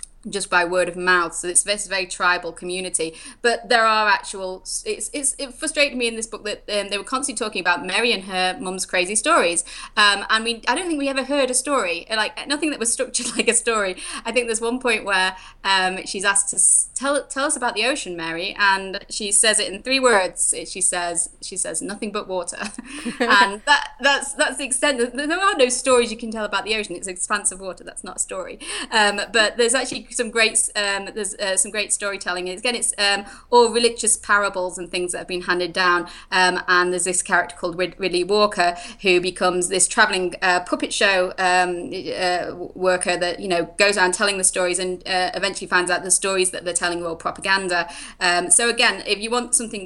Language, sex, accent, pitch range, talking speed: English, female, British, 180-230 Hz, 220 wpm